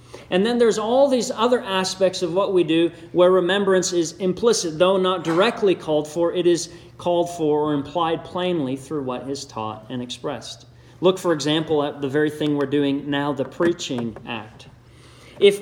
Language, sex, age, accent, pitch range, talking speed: English, male, 40-59, American, 140-195 Hz, 180 wpm